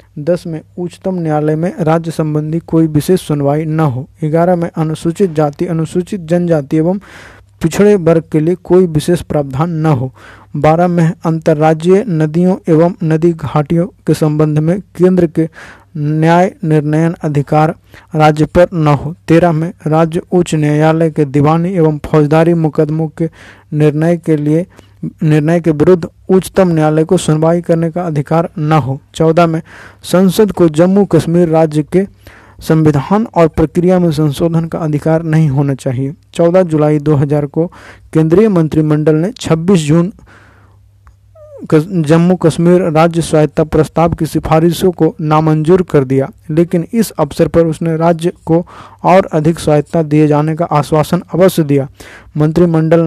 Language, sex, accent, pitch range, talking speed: Hindi, male, native, 155-175 Hz, 145 wpm